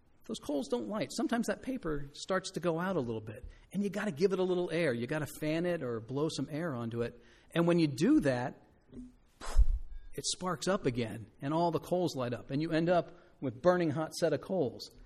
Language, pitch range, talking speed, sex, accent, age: English, 135-175 Hz, 235 wpm, male, American, 50-69